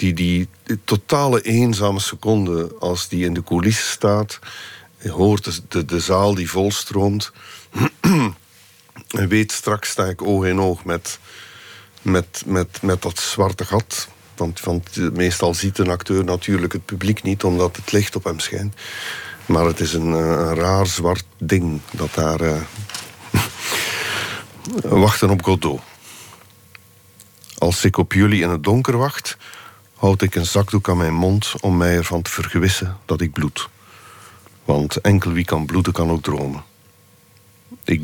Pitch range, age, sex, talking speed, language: 85-100 Hz, 50-69, male, 150 wpm, Dutch